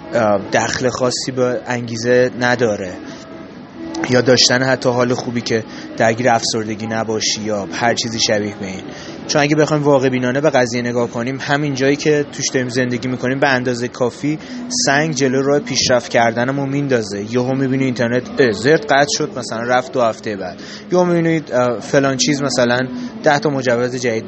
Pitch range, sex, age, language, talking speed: 120-150 Hz, male, 20-39, Persian, 160 wpm